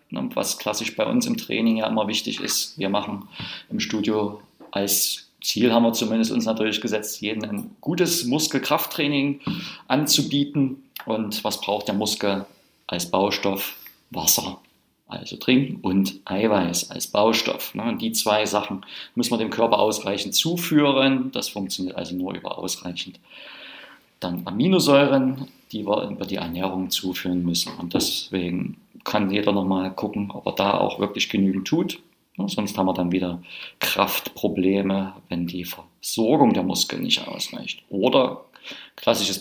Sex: male